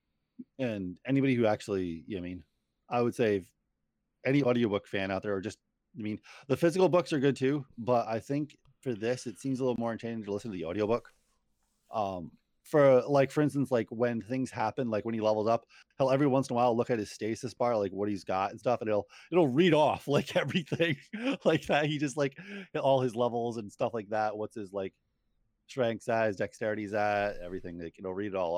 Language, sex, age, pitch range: English, male, 30-49, 100-130 Hz